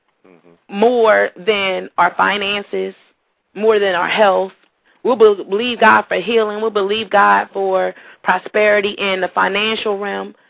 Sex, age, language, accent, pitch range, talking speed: female, 30-49, English, American, 195-245 Hz, 125 wpm